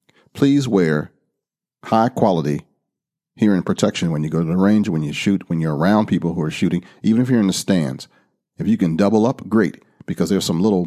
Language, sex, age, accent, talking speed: English, male, 40-59, American, 210 wpm